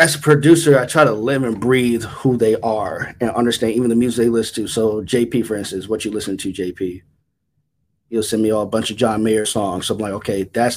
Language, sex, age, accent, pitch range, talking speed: English, male, 20-39, American, 110-120 Hz, 245 wpm